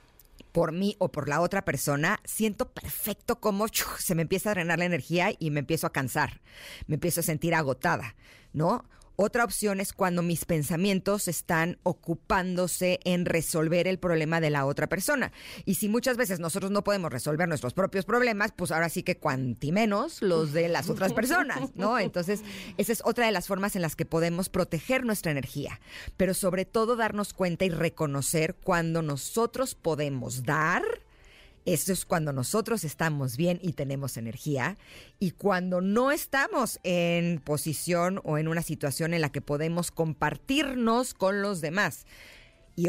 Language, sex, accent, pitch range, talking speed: Spanish, female, Mexican, 155-200 Hz, 170 wpm